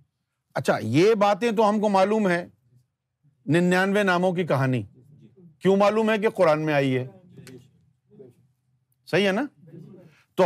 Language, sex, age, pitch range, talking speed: Urdu, male, 50-69, 140-220 Hz, 130 wpm